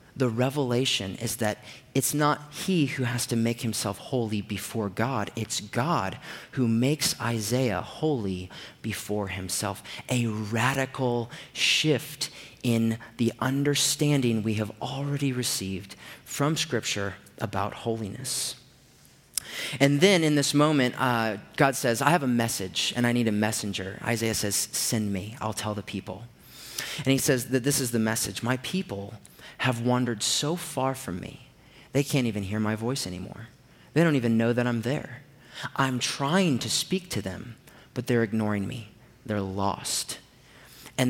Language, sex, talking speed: English, male, 155 wpm